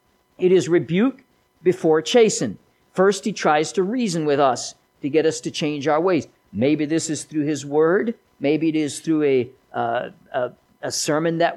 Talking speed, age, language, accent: 170 wpm, 50-69, English, American